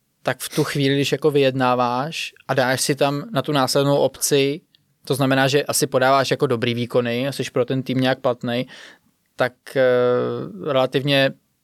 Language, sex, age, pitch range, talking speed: Czech, male, 20-39, 125-140 Hz, 165 wpm